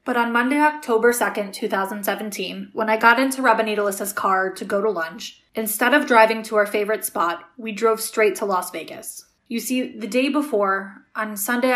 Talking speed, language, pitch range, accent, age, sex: 190 wpm, English, 200-235 Hz, American, 20-39, female